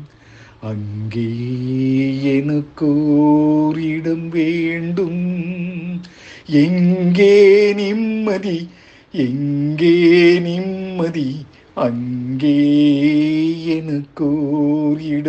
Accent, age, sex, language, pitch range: native, 50-69, male, Tamil, 150-195 Hz